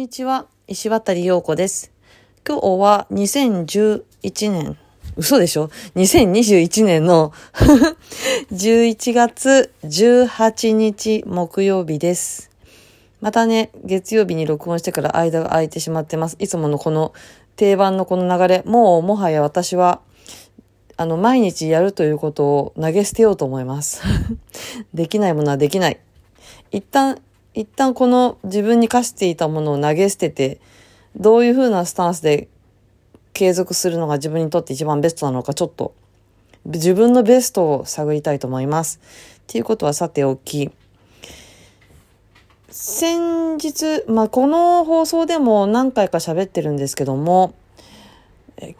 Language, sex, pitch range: Japanese, female, 145-220 Hz